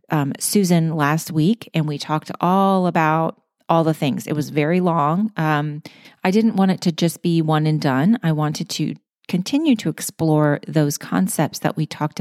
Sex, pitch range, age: female, 145-175 Hz, 30-49